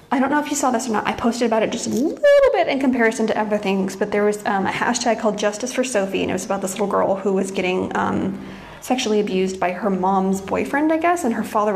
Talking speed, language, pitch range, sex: 275 wpm, English, 200-260 Hz, female